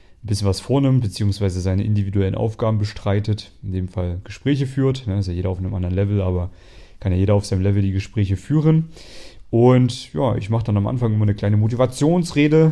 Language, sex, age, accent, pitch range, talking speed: German, male, 30-49, German, 95-120 Hz, 200 wpm